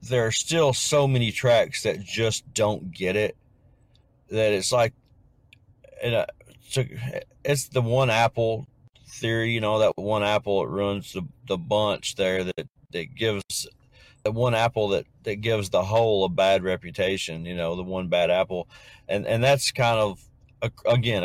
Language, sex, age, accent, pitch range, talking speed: English, male, 40-59, American, 100-130 Hz, 160 wpm